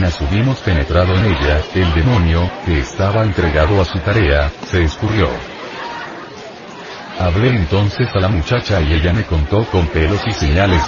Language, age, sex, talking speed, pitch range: Spanish, 40-59, male, 150 wpm, 85-105 Hz